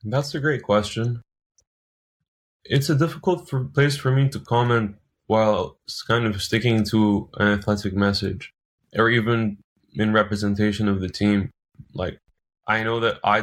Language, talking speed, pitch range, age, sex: English, 145 wpm, 100-110 Hz, 20-39, male